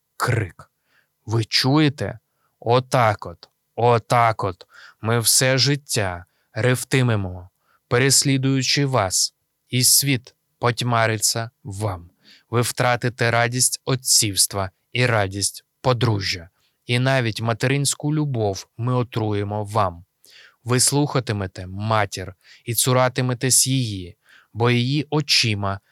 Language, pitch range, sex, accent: Ukrainian, 105-130 Hz, male, native